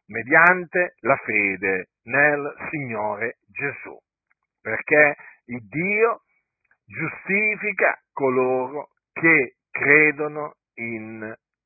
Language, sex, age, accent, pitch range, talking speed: Italian, male, 50-69, native, 135-185 Hz, 70 wpm